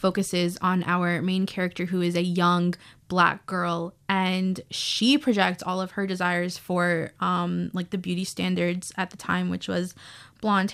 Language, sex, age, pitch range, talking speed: English, female, 20-39, 180-215 Hz, 170 wpm